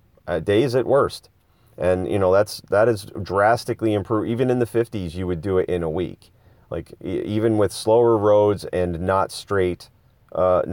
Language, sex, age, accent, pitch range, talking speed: English, male, 30-49, American, 100-120 Hz, 180 wpm